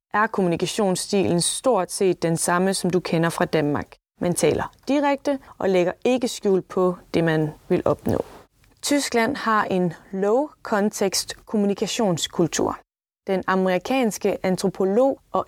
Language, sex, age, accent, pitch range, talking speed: Danish, female, 20-39, native, 185-235 Hz, 130 wpm